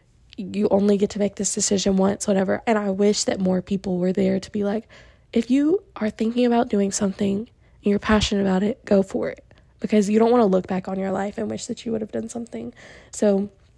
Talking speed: 235 wpm